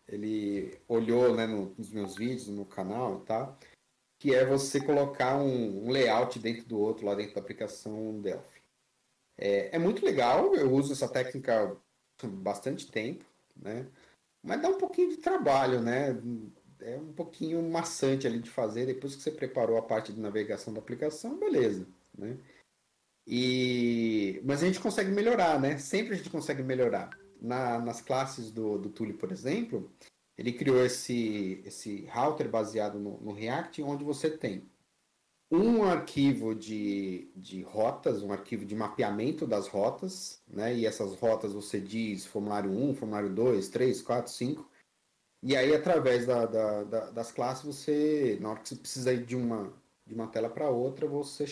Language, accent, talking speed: Portuguese, Brazilian, 165 wpm